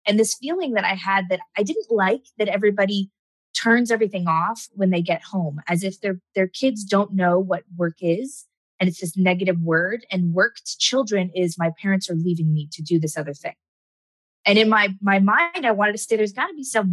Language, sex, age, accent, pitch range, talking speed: English, female, 20-39, American, 165-195 Hz, 220 wpm